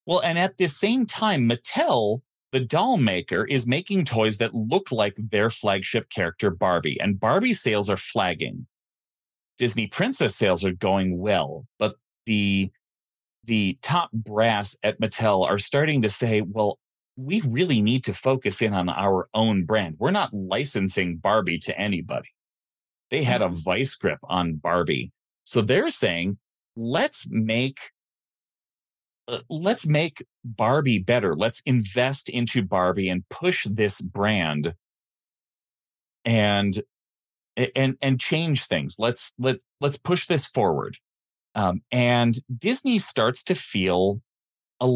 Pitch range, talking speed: 95-130 Hz, 135 wpm